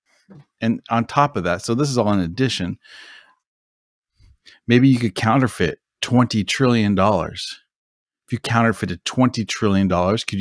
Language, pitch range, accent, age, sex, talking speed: English, 90-115 Hz, American, 30-49, male, 135 wpm